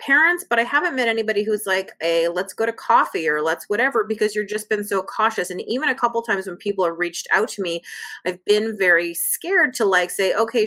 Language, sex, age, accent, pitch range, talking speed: English, female, 30-49, American, 175-245 Hz, 235 wpm